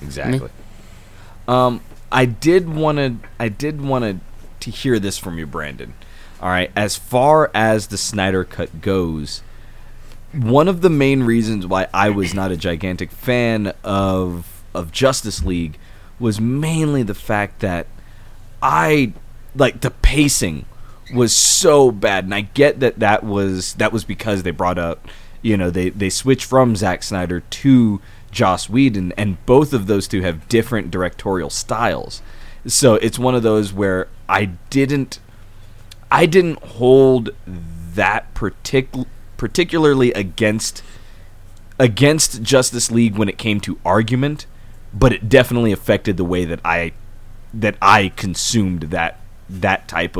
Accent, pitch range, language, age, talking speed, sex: American, 95-125 Hz, English, 20-39, 145 wpm, male